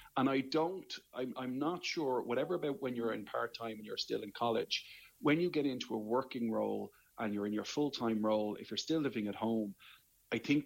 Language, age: English, 30-49